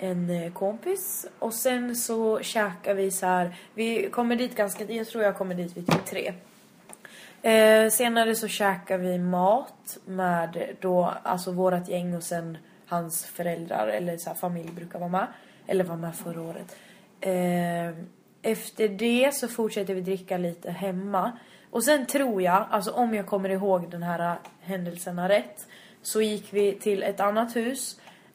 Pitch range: 185-220 Hz